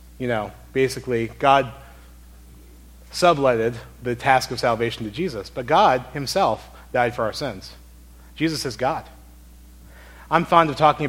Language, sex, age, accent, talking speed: English, male, 30-49, American, 135 wpm